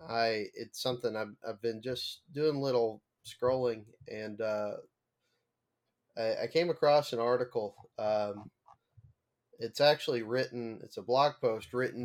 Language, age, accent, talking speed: English, 20-39, American, 135 wpm